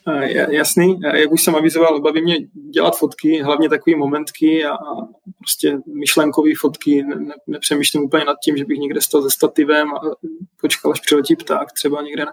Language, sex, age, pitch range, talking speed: Czech, male, 20-39, 145-160 Hz, 180 wpm